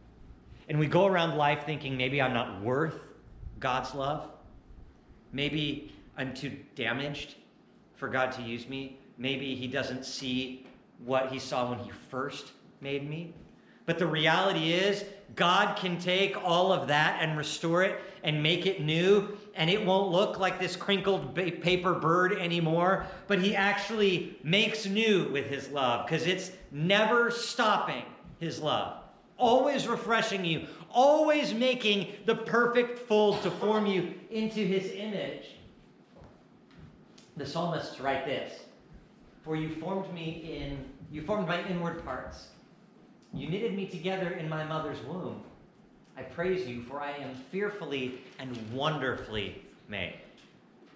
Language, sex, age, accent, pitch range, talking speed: English, male, 40-59, American, 140-195 Hz, 140 wpm